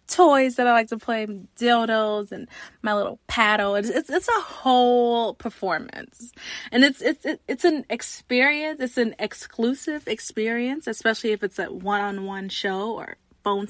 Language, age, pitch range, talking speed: English, 20-39, 205-255 Hz, 155 wpm